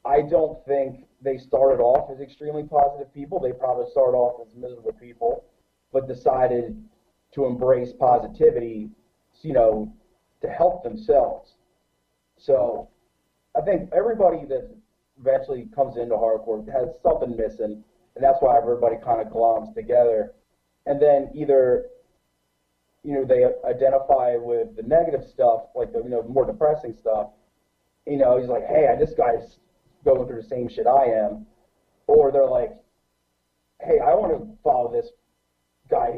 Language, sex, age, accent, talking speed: English, male, 30-49, American, 150 wpm